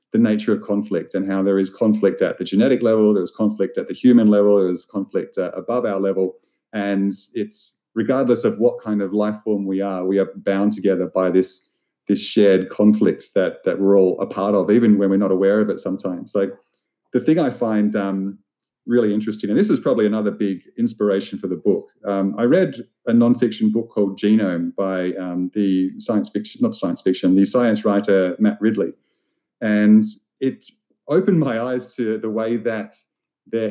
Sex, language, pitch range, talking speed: male, English, 100-115 Hz, 200 wpm